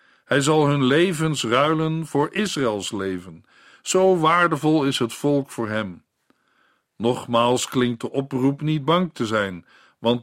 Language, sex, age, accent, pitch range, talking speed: Dutch, male, 50-69, Dutch, 115-155 Hz, 140 wpm